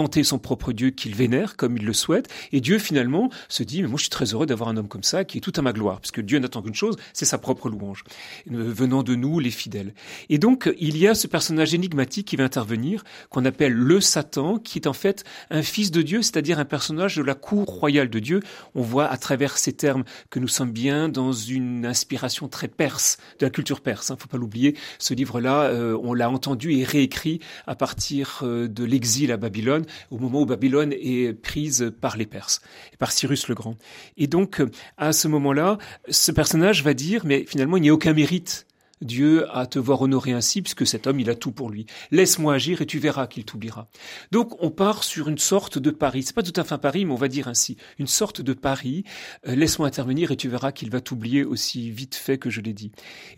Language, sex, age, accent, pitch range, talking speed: French, male, 40-59, French, 125-160 Hz, 235 wpm